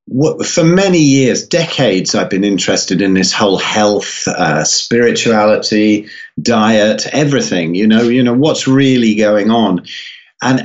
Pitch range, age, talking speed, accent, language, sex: 110-155 Hz, 40-59, 135 wpm, British, English, male